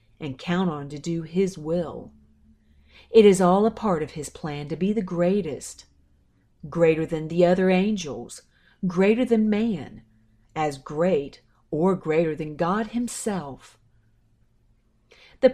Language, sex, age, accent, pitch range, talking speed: English, female, 40-59, American, 140-190 Hz, 135 wpm